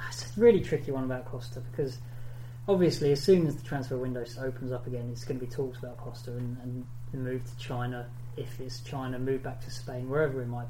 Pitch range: 120-150 Hz